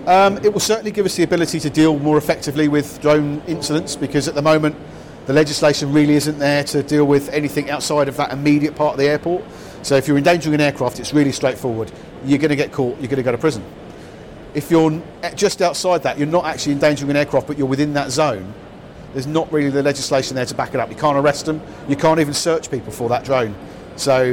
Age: 40-59